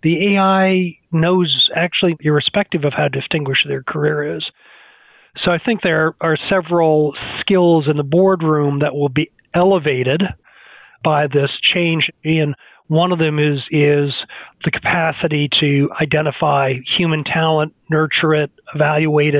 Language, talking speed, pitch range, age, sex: English, 135 wpm, 140-170 Hz, 40-59, male